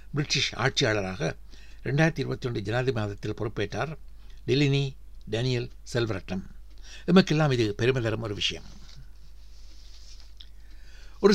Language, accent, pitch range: Tamil, native, 105-140 Hz